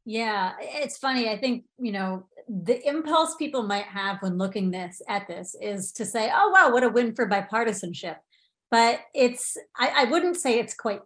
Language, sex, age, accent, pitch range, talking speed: English, female, 30-49, American, 200-245 Hz, 190 wpm